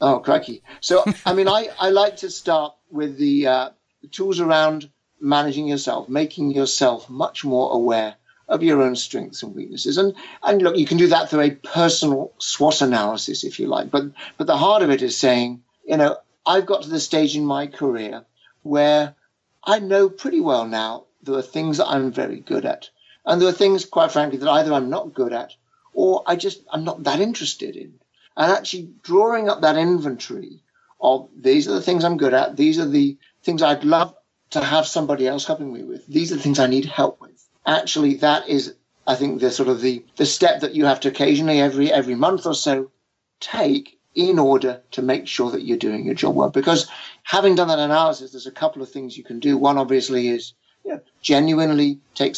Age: 60-79